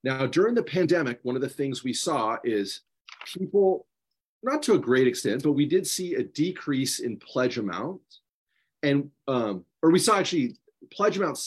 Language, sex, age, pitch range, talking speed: English, male, 40-59, 125-180 Hz, 180 wpm